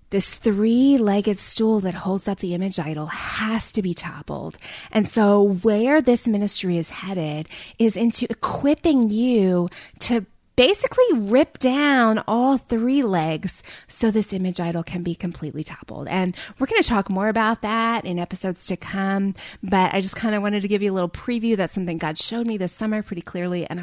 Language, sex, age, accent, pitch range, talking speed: English, female, 20-39, American, 180-225 Hz, 180 wpm